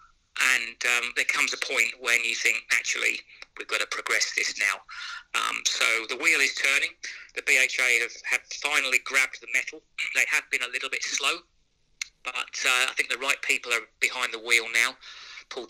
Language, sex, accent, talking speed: English, male, British, 190 wpm